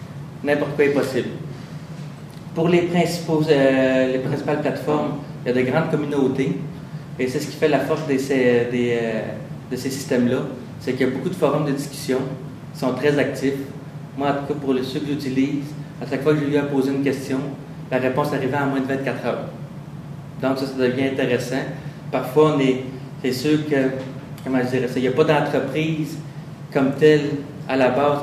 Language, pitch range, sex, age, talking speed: French, 130-150 Hz, male, 30-49, 200 wpm